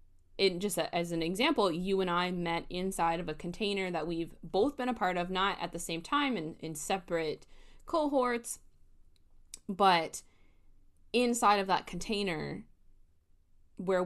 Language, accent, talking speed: English, American, 145 wpm